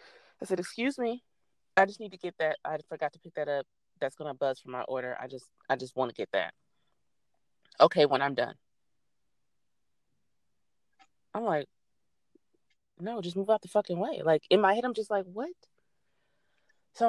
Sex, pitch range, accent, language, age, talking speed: female, 155-210 Hz, American, English, 20-39, 180 wpm